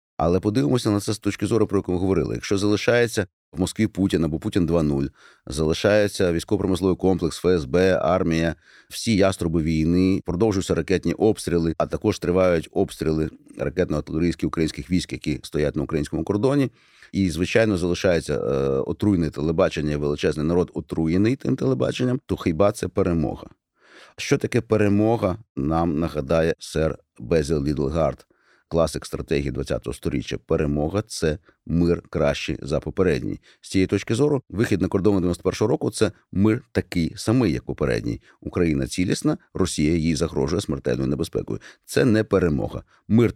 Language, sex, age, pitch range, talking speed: Ukrainian, male, 30-49, 80-105 Hz, 140 wpm